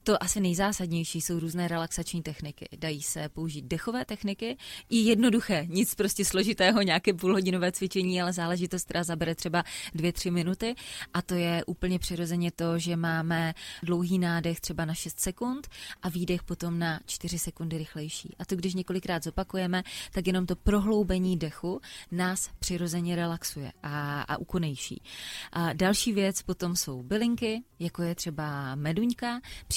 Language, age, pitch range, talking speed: Czech, 20-39, 160-185 Hz, 155 wpm